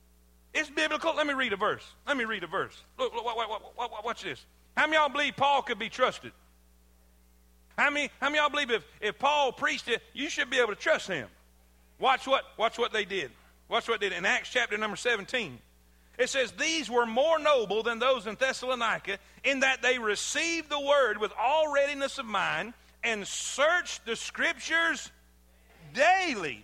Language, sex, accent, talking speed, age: English, male, American, 190 wpm, 40-59